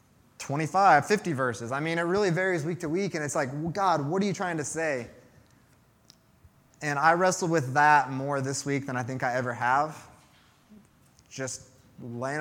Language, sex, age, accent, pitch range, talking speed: English, male, 20-39, American, 130-165 Hz, 180 wpm